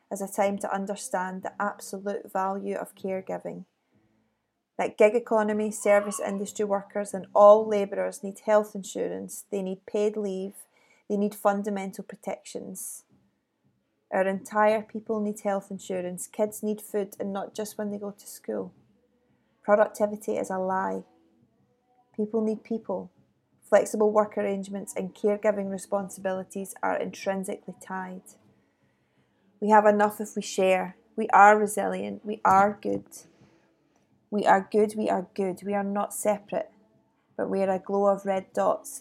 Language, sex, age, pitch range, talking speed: English, female, 30-49, 190-210 Hz, 145 wpm